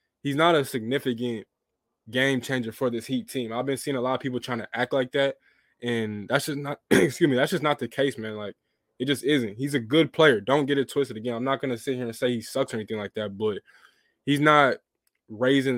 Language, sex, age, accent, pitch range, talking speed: English, male, 20-39, American, 120-140 Hz, 245 wpm